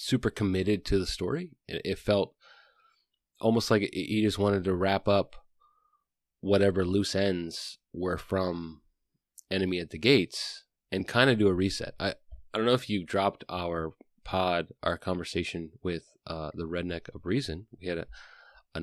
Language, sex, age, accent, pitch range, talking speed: English, male, 30-49, American, 85-110 Hz, 165 wpm